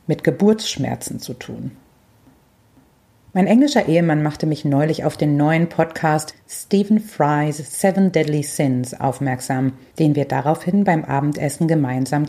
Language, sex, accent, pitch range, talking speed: German, female, German, 140-170 Hz, 125 wpm